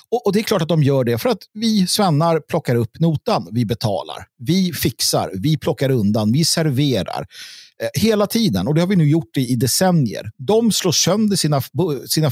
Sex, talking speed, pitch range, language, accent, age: male, 200 wpm, 130-180 Hz, Swedish, native, 50-69